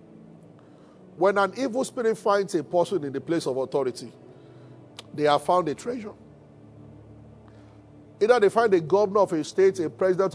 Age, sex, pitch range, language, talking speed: 40-59, male, 155-225 Hz, English, 160 wpm